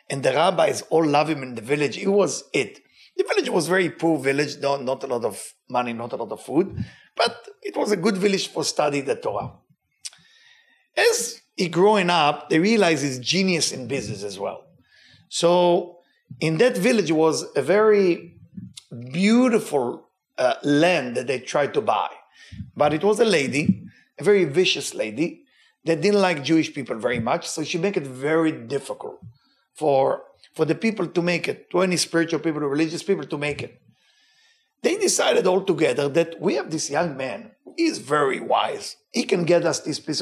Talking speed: 185 wpm